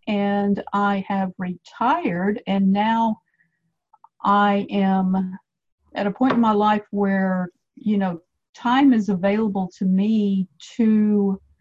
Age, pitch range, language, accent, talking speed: 50-69, 185-210 Hz, English, American, 120 wpm